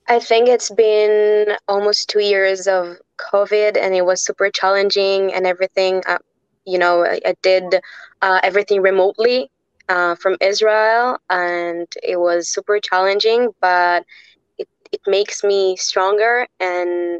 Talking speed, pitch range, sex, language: 140 wpm, 180-210 Hz, female, English